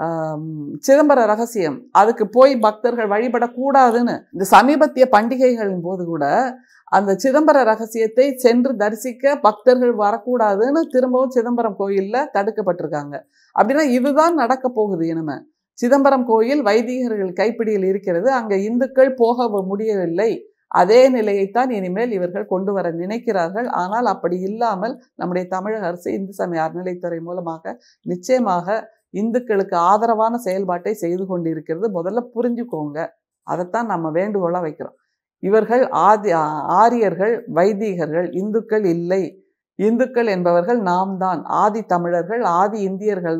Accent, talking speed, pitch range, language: native, 110 wpm, 185-250 Hz, Tamil